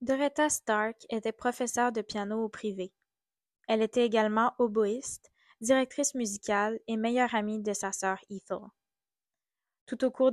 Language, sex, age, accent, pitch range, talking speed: French, female, 20-39, Canadian, 205-245 Hz, 140 wpm